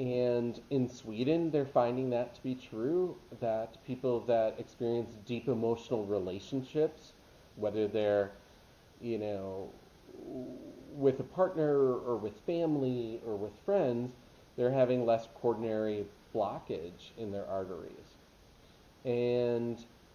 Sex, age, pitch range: male, 30-49, 110-130 Hz